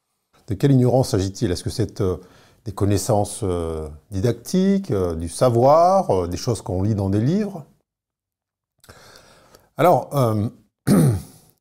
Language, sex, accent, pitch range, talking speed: French, male, French, 95-130 Hz, 125 wpm